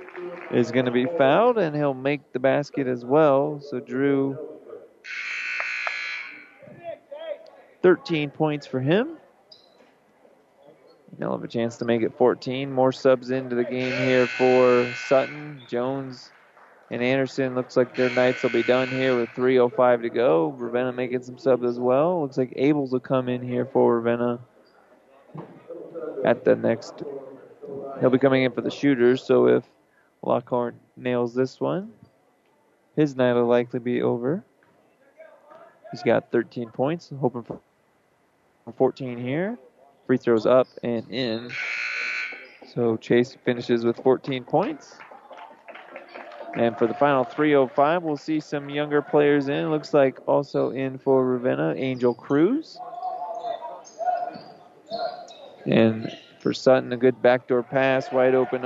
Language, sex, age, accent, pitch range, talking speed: English, male, 30-49, American, 125-145 Hz, 135 wpm